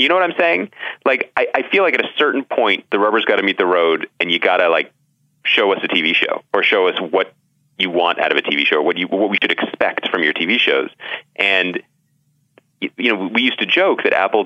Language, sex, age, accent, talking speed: English, male, 30-49, American, 250 wpm